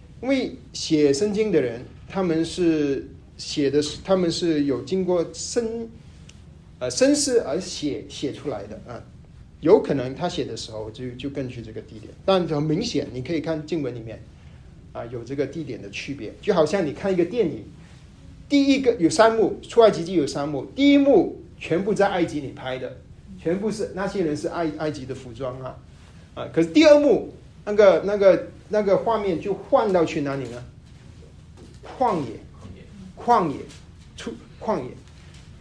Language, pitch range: Chinese, 125-190 Hz